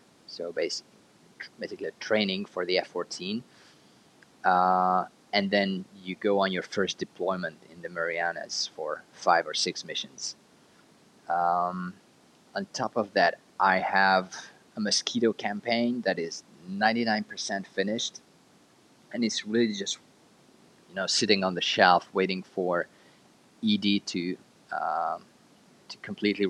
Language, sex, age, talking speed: English, male, 30-49, 130 wpm